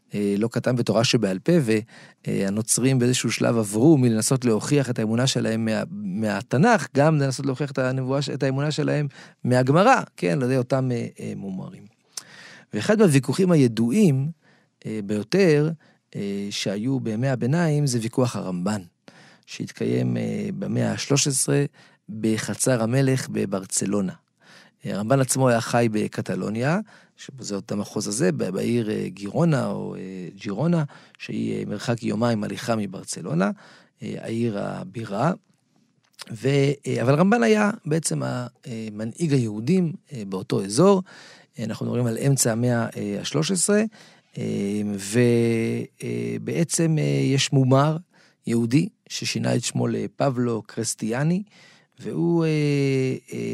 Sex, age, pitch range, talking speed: male, 40-59, 115-160 Hz, 105 wpm